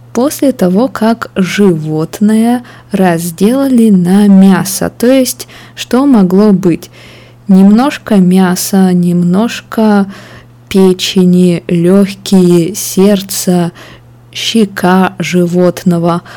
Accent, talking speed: native, 75 wpm